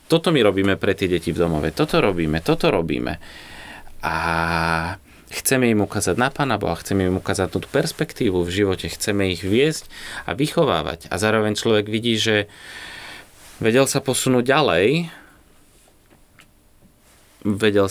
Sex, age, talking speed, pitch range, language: male, 20-39, 135 wpm, 90-115 Hz, Slovak